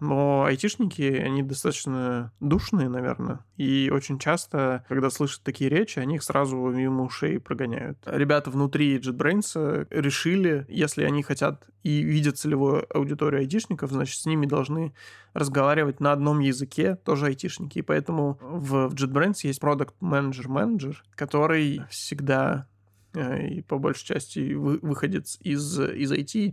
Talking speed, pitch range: 135 wpm, 135-150 Hz